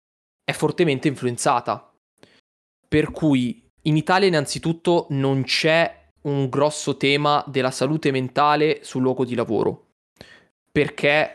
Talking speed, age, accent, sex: 110 wpm, 20-39, native, male